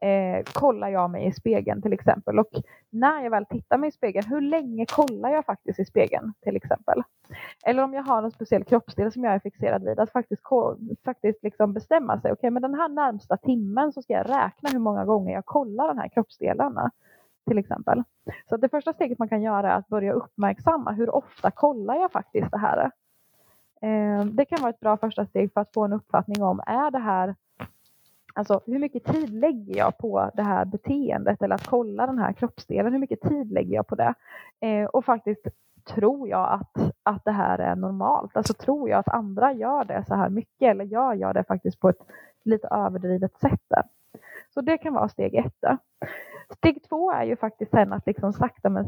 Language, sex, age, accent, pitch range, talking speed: Swedish, female, 20-39, native, 205-270 Hz, 210 wpm